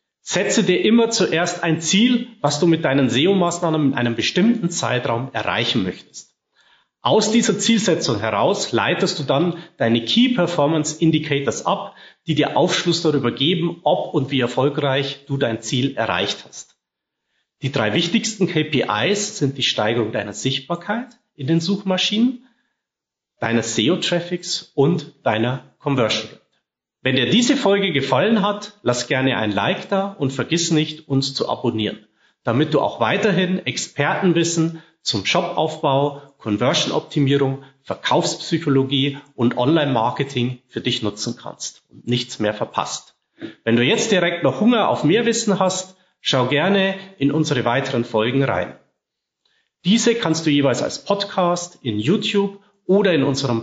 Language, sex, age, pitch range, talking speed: German, male, 40-59, 135-185 Hz, 140 wpm